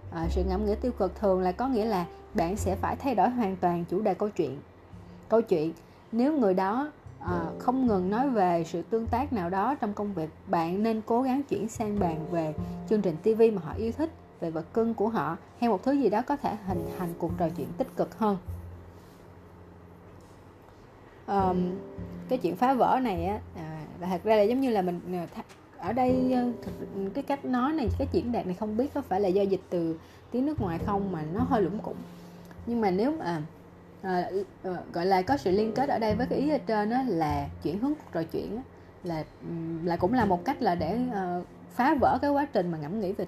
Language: Vietnamese